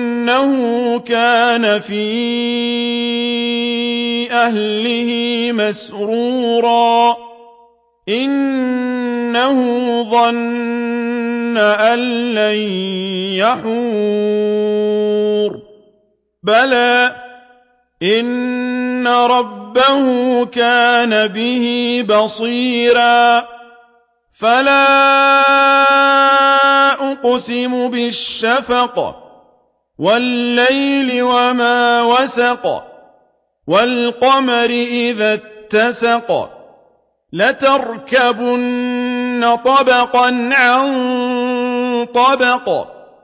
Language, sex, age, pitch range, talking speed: Arabic, male, 50-69, 230-250 Hz, 40 wpm